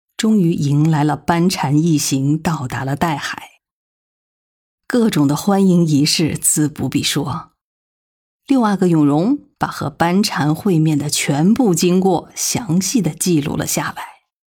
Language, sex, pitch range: Chinese, female, 155-230 Hz